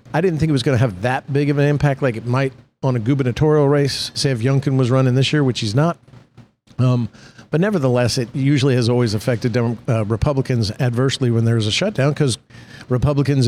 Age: 50-69